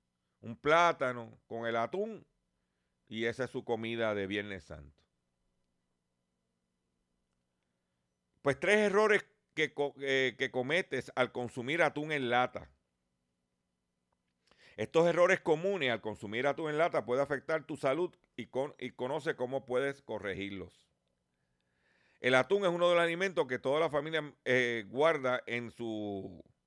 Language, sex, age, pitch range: Spanish, male, 50-69, 90-140 Hz